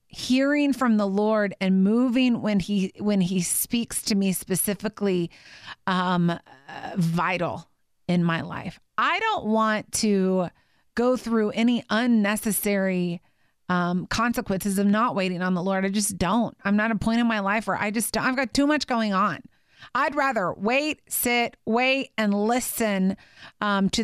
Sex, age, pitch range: female, 30-49, 190-225 Hz